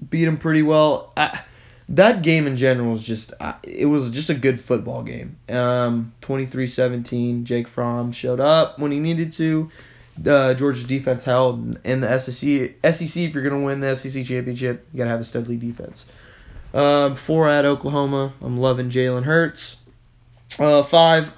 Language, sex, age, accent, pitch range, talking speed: English, male, 20-39, American, 120-145 Hz, 175 wpm